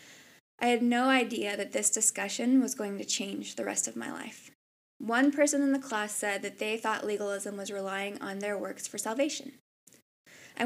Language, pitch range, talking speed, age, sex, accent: English, 205-245 Hz, 190 wpm, 20-39, female, American